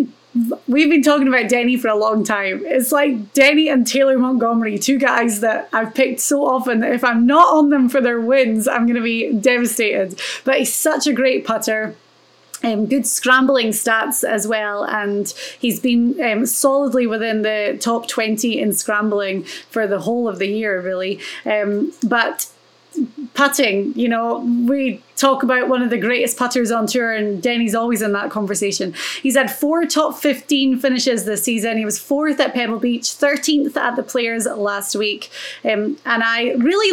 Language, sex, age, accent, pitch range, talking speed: English, female, 30-49, British, 225-270 Hz, 180 wpm